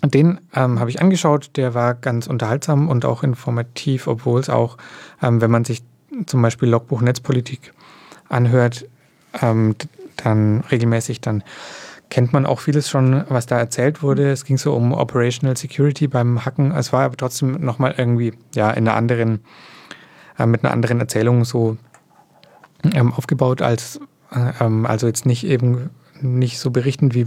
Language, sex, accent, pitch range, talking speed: English, male, German, 120-140 Hz, 165 wpm